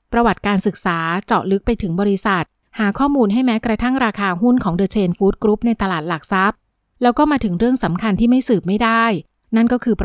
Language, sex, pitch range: Thai, female, 195-240 Hz